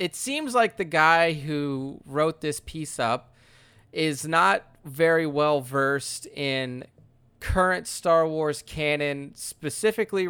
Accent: American